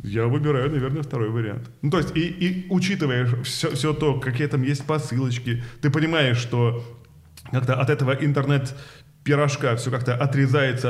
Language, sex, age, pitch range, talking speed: Russian, male, 20-39, 125-160 Hz, 155 wpm